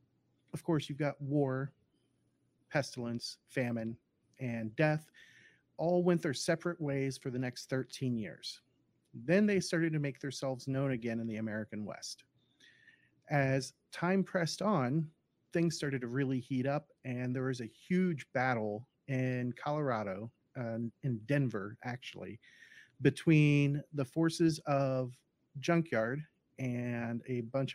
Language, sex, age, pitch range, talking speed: English, male, 40-59, 120-150 Hz, 130 wpm